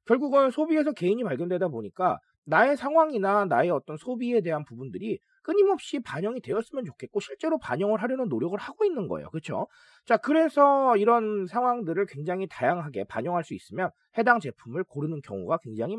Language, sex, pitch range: Korean, male, 155-245 Hz